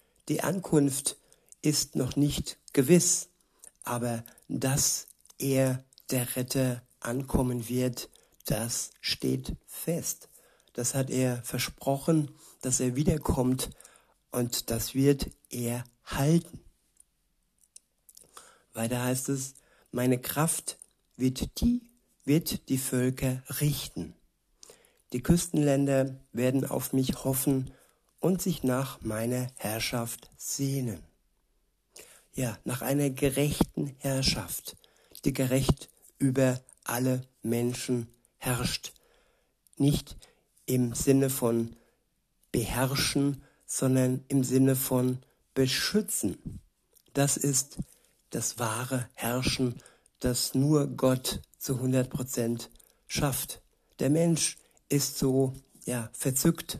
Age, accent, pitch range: 60-79, German, 125-140 Hz